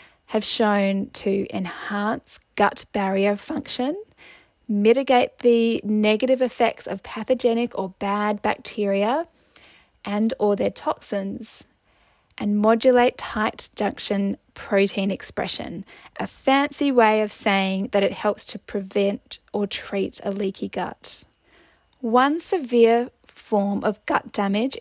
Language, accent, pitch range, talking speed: English, Australian, 205-240 Hz, 115 wpm